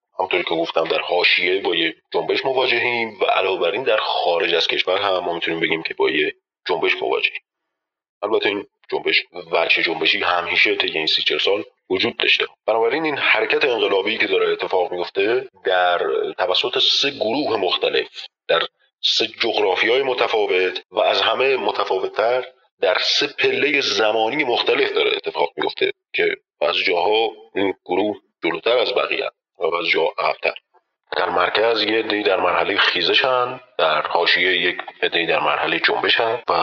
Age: 30-49